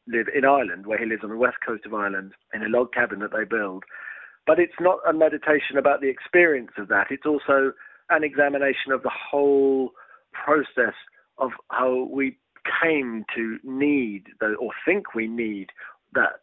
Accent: British